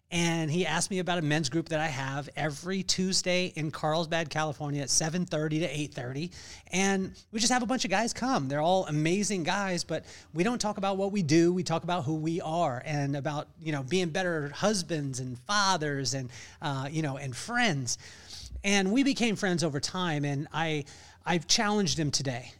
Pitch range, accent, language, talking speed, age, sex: 145-185 Hz, American, English, 195 wpm, 30-49, male